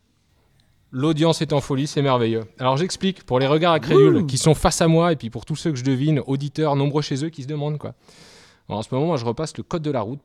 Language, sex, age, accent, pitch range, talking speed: French, male, 20-39, French, 120-160 Hz, 265 wpm